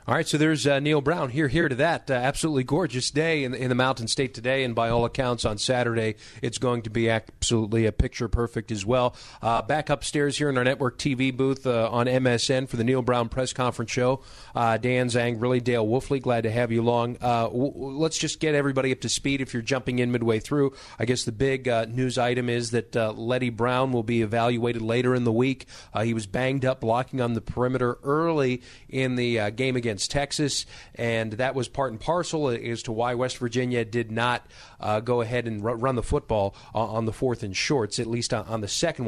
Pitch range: 115-135 Hz